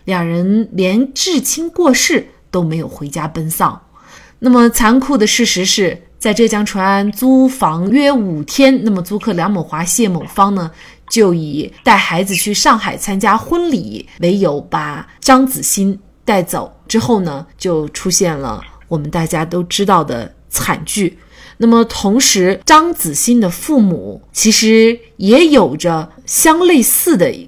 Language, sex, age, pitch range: Chinese, female, 30-49, 180-235 Hz